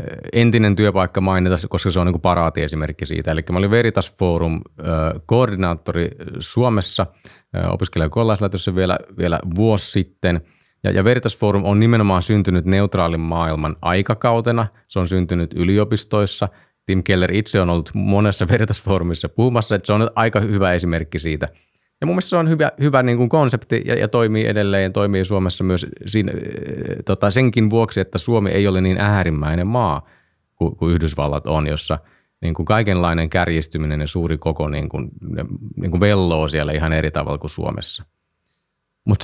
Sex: male